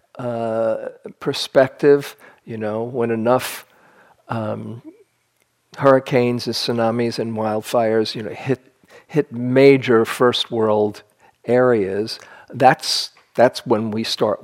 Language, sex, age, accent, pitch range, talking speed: English, male, 50-69, American, 110-130 Hz, 105 wpm